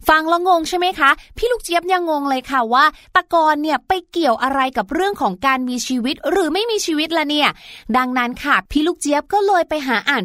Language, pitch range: Thai, 245-320 Hz